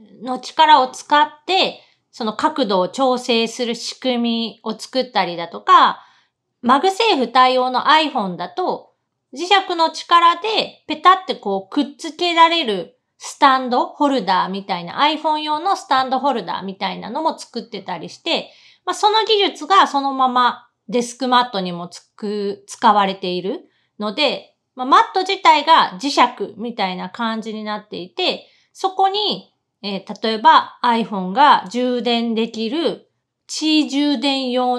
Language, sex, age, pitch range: Japanese, female, 30-49, 210-305 Hz